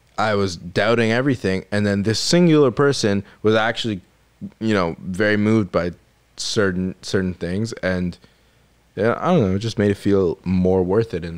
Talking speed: 175 wpm